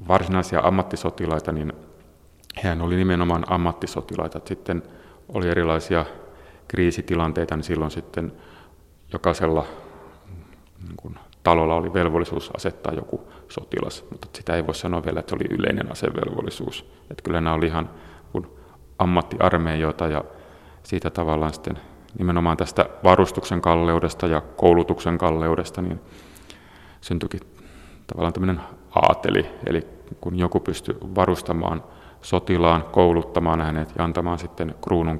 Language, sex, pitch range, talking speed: Finnish, male, 80-90 Hz, 115 wpm